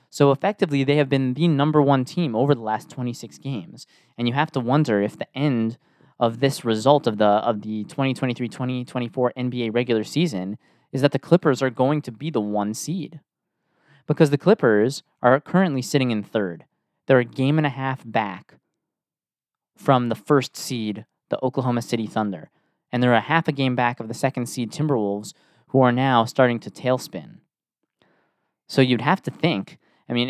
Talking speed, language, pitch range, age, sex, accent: 180 wpm, English, 115-140 Hz, 20-39, male, American